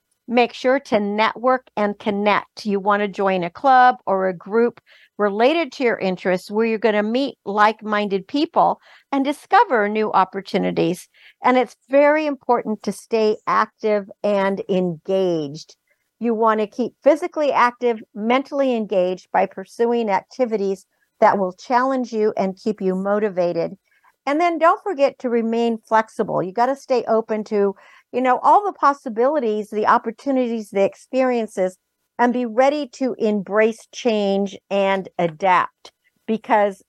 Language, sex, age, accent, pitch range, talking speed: English, female, 50-69, American, 200-250 Hz, 145 wpm